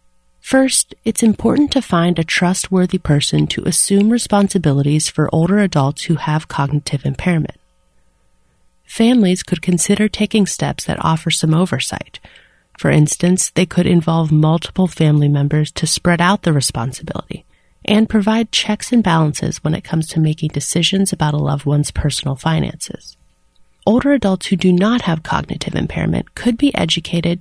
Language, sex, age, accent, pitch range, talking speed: English, female, 30-49, American, 155-195 Hz, 150 wpm